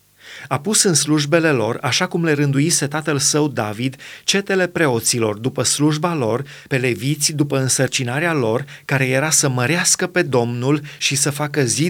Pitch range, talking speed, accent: 130-160 Hz, 160 wpm, native